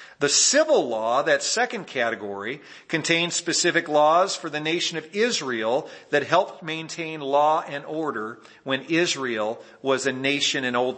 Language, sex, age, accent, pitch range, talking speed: English, male, 50-69, American, 120-170 Hz, 150 wpm